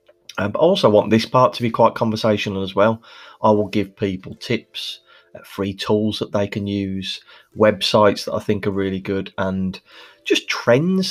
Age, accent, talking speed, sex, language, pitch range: 30-49, British, 180 wpm, male, English, 95-115 Hz